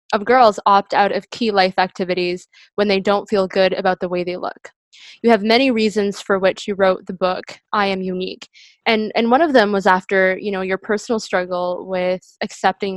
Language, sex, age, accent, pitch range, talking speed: English, female, 20-39, American, 185-210 Hz, 210 wpm